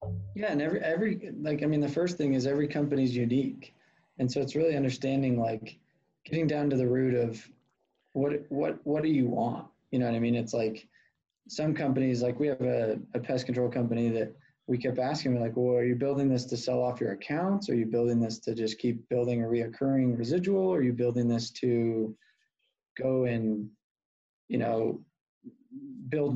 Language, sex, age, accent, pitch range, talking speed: English, male, 20-39, American, 125-160 Hz, 195 wpm